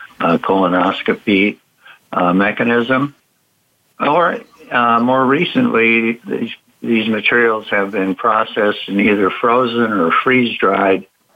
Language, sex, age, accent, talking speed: English, male, 60-79, American, 95 wpm